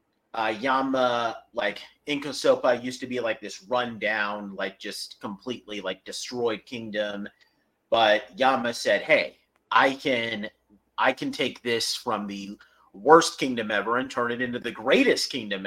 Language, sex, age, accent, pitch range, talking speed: English, male, 30-49, American, 105-130 Hz, 145 wpm